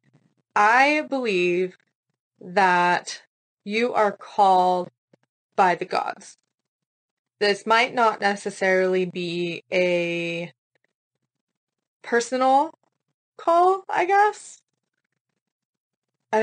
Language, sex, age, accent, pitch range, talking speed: English, female, 20-39, American, 175-215 Hz, 75 wpm